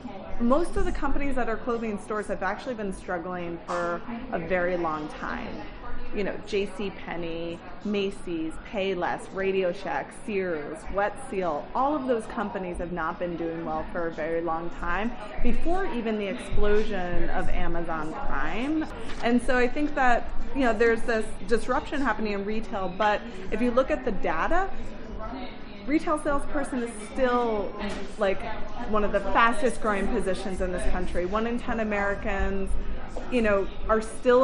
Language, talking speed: English, 155 wpm